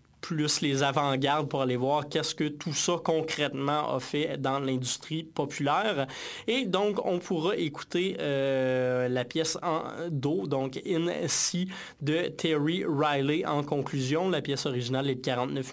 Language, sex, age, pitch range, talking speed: French, male, 20-39, 140-170 Hz, 155 wpm